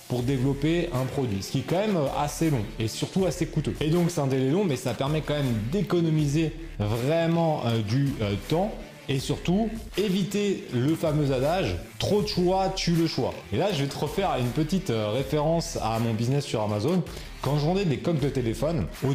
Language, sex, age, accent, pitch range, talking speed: French, male, 30-49, French, 125-170 Hz, 195 wpm